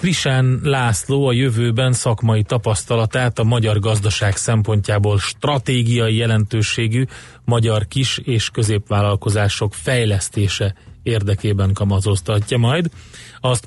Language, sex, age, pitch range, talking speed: Hungarian, male, 30-49, 105-125 Hz, 90 wpm